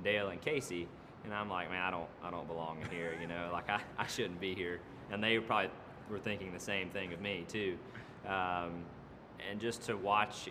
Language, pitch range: English, 85-105 Hz